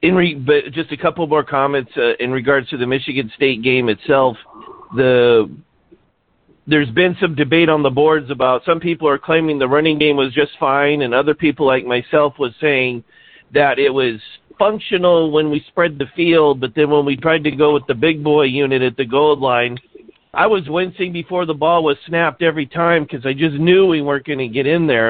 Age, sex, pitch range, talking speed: 50-69, male, 130-160 Hz, 215 wpm